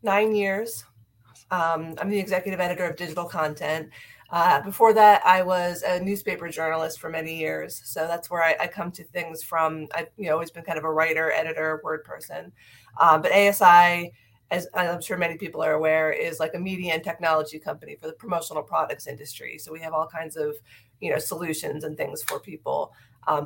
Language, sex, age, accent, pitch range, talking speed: English, female, 30-49, American, 155-190 Hz, 200 wpm